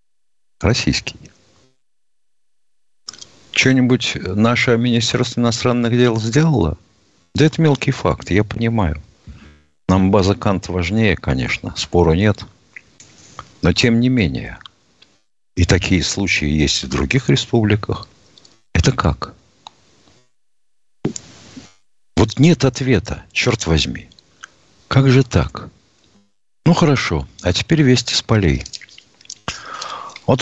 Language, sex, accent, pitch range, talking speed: Russian, male, native, 85-120 Hz, 100 wpm